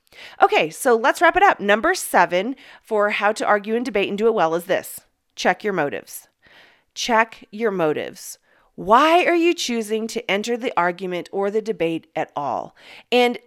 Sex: female